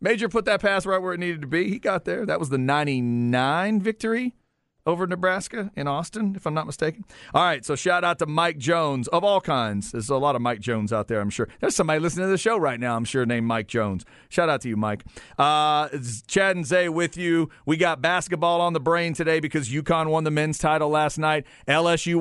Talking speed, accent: 230 wpm, American